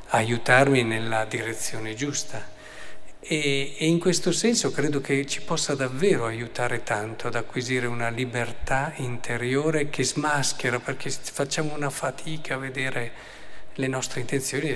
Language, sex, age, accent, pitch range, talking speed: Italian, male, 50-69, native, 120-150 Hz, 130 wpm